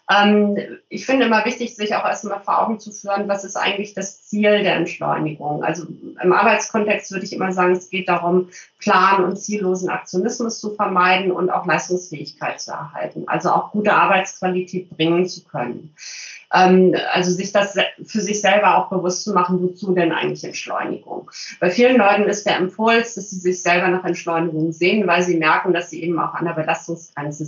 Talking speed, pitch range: 185 wpm, 175-205 Hz